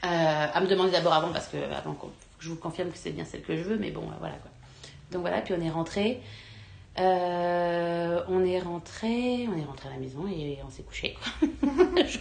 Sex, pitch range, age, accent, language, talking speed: female, 175-230 Hz, 30-49, French, French, 235 wpm